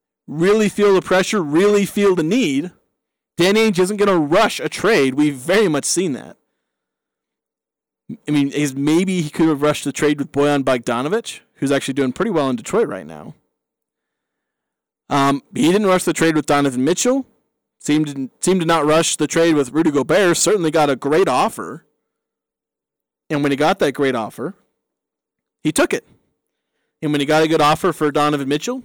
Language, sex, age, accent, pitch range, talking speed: English, male, 30-49, American, 140-185 Hz, 180 wpm